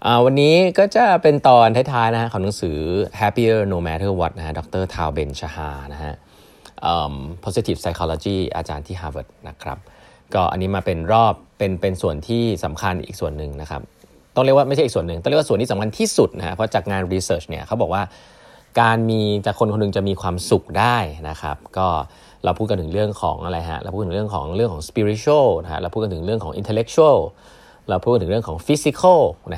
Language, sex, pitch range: Thai, male, 85-115 Hz